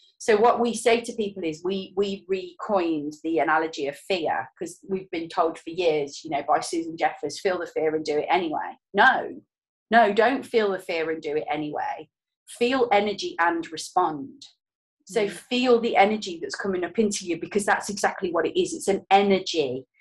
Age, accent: 30-49, British